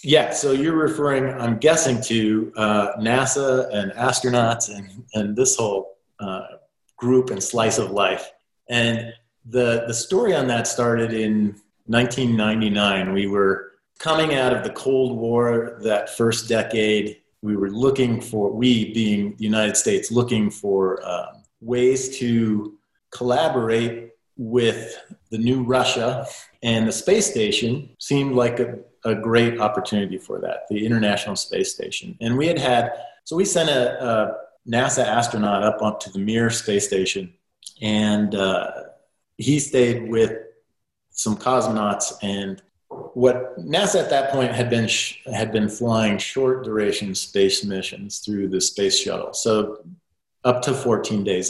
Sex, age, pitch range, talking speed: male, 40-59, 105-125 Hz, 145 wpm